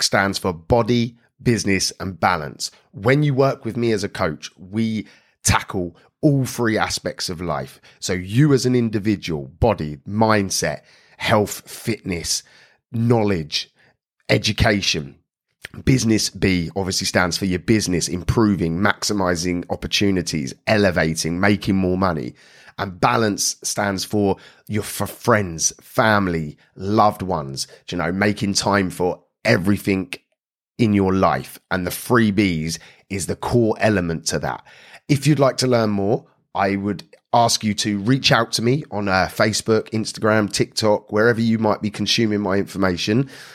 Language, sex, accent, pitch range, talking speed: English, male, British, 95-115 Hz, 140 wpm